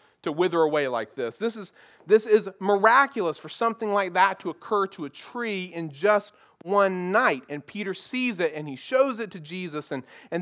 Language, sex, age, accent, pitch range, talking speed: English, male, 40-59, American, 185-230 Hz, 200 wpm